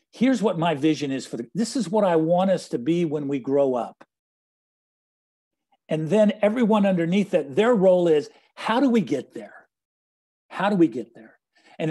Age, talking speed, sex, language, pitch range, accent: 50-69, 190 wpm, male, English, 150-205 Hz, American